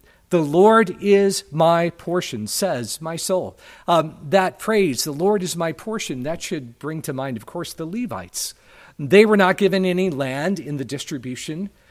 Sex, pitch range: male, 125-190 Hz